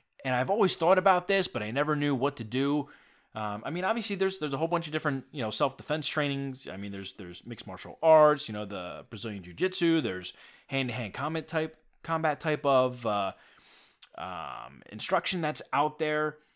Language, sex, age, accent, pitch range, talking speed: English, male, 20-39, American, 110-160 Hz, 205 wpm